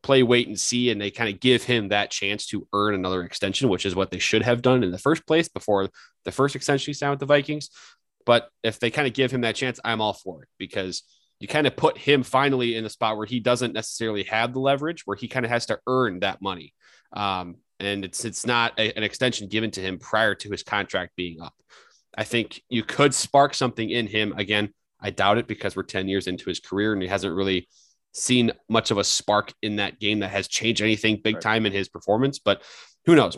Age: 30-49